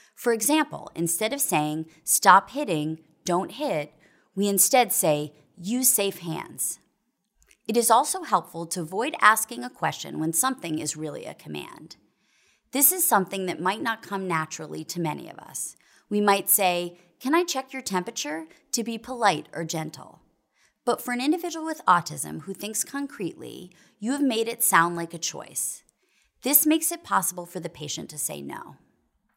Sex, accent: female, American